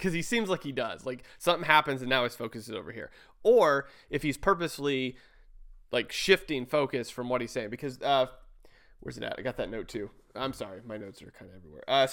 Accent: American